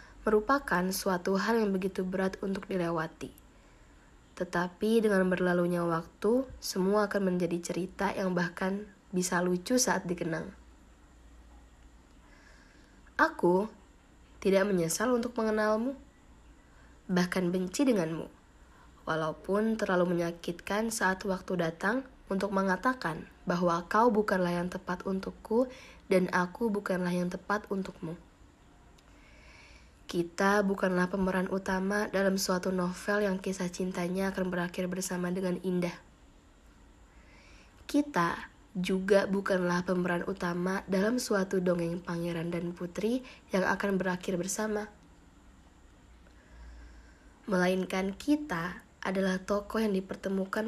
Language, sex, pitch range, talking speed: Indonesian, female, 175-200 Hz, 100 wpm